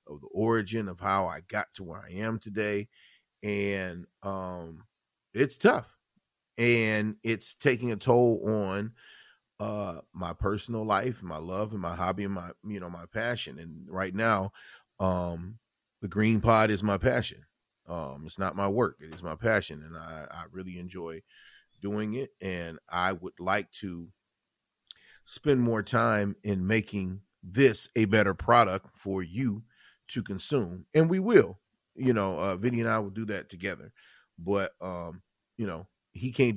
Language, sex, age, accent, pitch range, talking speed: English, male, 40-59, American, 90-110 Hz, 165 wpm